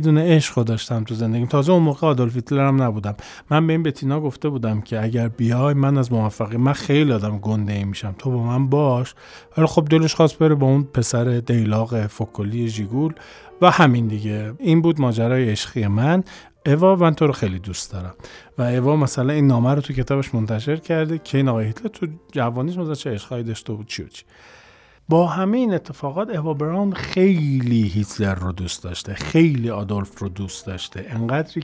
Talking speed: 180 wpm